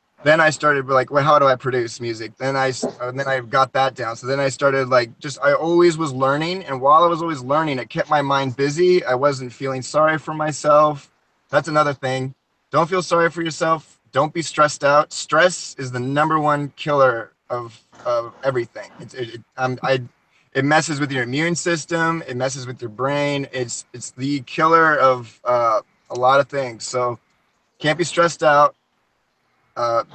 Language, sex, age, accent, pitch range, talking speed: English, male, 20-39, American, 125-155 Hz, 195 wpm